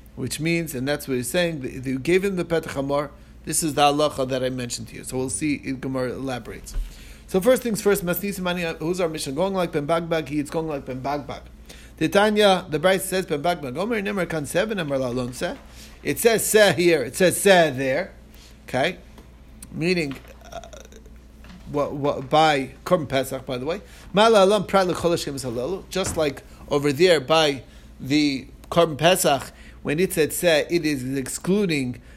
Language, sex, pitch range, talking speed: English, male, 135-180 Hz, 170 wpm